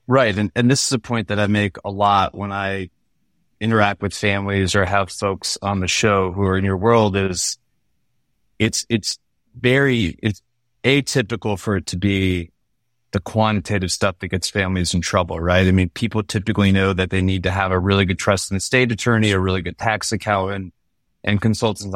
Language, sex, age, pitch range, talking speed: English, male, 30-49, 95-110 Hz, 195 wpm